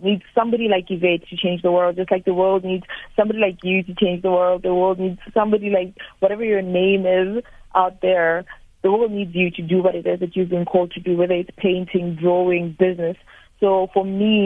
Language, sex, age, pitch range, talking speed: English, female, 30-49, 175-190 Hz, 225 wpm